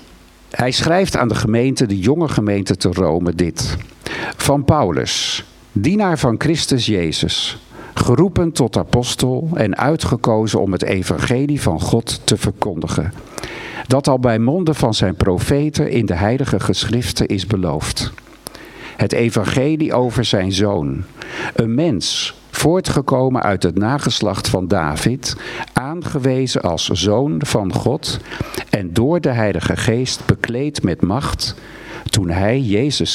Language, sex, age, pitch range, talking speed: Dutch, male, 50-69, 100-140 Hz, 130 wpm